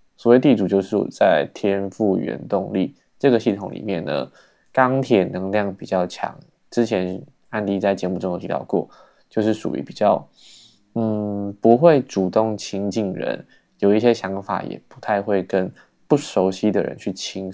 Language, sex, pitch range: Chinese, male, 95-115 Hz